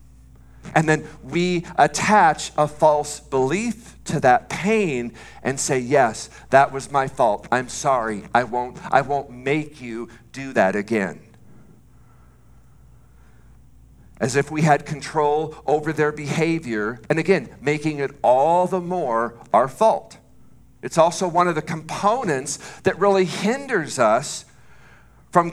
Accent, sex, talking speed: American, male, 130 wpm